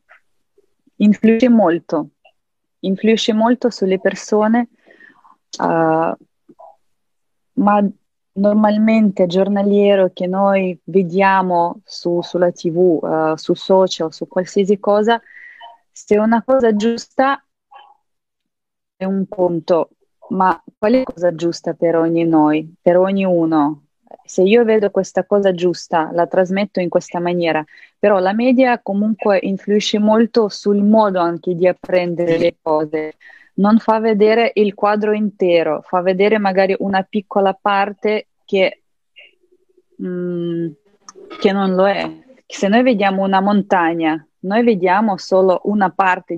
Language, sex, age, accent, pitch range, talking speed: Italian, female, 30-49, native, 175-215 Hz, 115 wpm